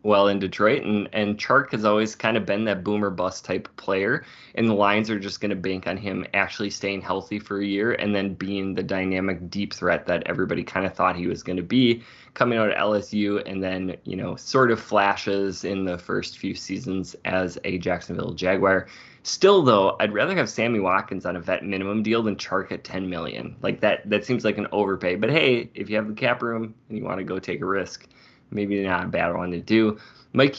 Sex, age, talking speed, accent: male, 20-39, 230 wpm, American